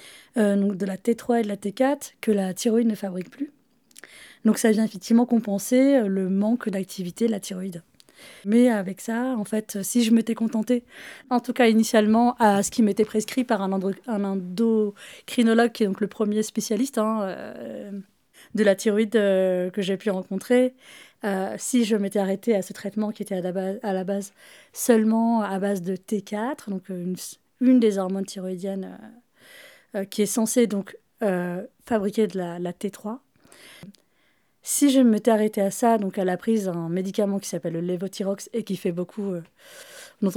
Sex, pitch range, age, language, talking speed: female, 195-230 Hz, 20-39, French, 175 wpm